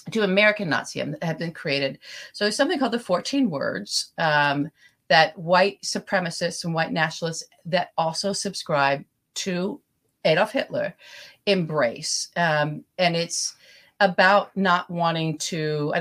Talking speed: 130 wpm